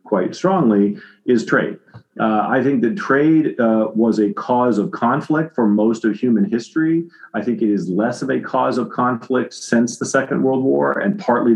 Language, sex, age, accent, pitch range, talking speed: English, male, 40-59, American, 100-120 Hz, 190 wpm